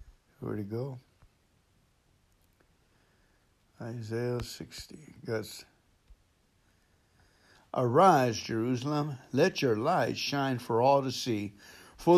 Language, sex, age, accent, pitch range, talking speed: English, male, 60-79, American, 110-150 Hz, 85 wpm